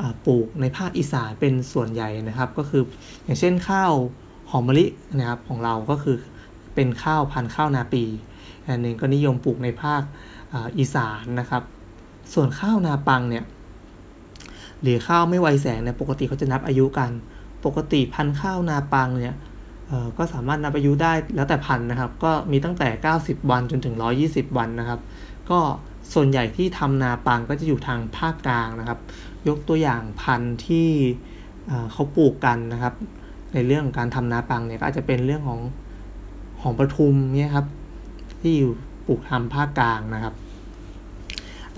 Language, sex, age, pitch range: Thai, male, 20-39, 115-145 Hz